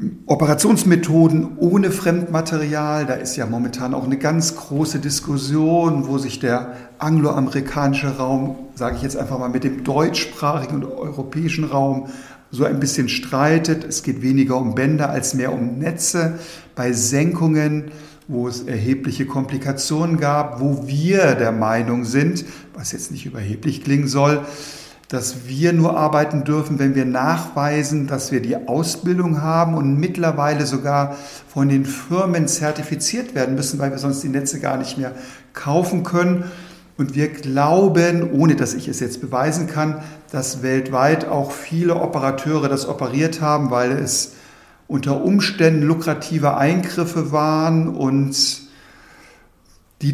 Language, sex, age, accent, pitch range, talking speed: German, male, 50-69, German, 135-160 Hz, 140 wpm